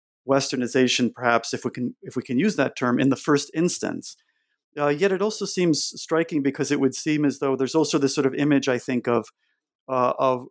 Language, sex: English, male